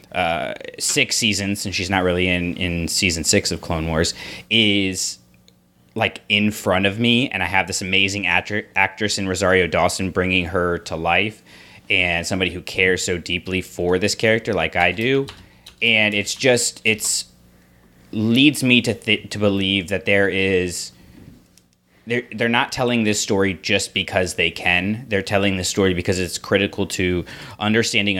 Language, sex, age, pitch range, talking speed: English, male, 20-39, 85-100 Hz, 165 wpm